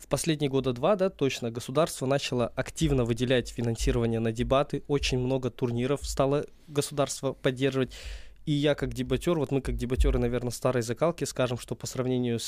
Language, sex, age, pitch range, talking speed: Russian, male, 20-39, 120-145 Hz, 165 wpm